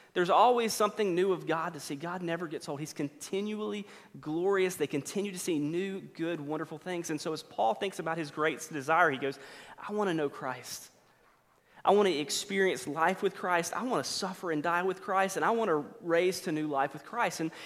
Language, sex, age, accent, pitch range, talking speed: English, male, 30-49, American, 155-195 Hz, 220 wpm